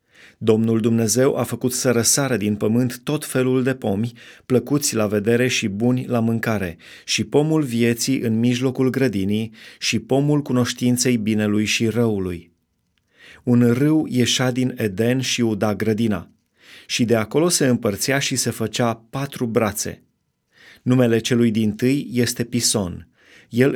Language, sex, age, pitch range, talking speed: Romanian, male, 30-49, 115-130 Hz, 140 wpm